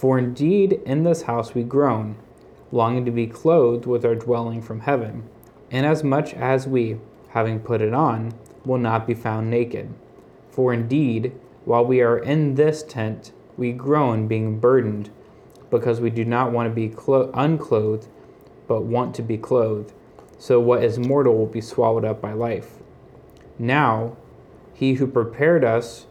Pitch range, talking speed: 115-130 Hz, 165 wpm